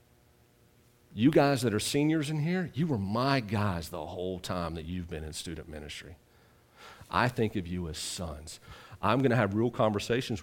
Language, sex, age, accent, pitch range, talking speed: English, male, 40-59, American, 110-165 Hz, 185 wpm